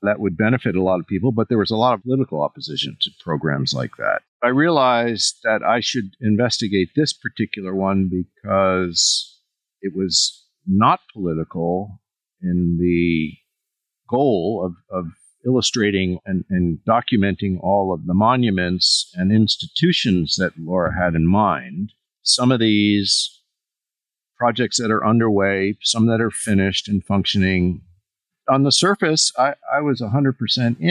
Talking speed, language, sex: 140 wpm, English, male